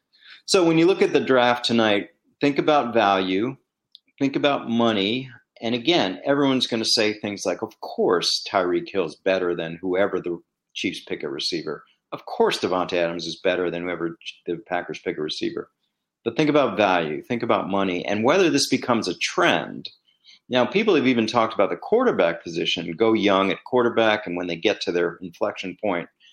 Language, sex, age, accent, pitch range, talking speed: English, male, 40-59, American, 90-120 Hz, 185 wpm